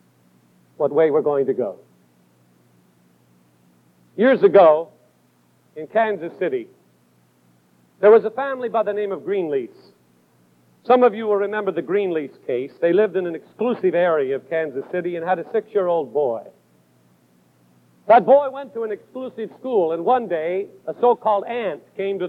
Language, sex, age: English, male, 50-69